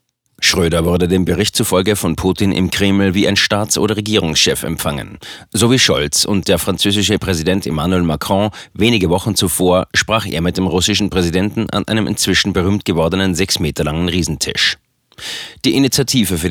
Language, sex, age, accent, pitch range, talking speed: German, male, 30-49, German, 85-105 Hz, 165 wpm